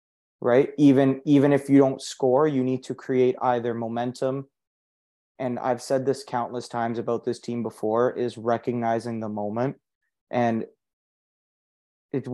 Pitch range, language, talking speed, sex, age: 110-130 Hz, English, 140 wpm, male, 20-39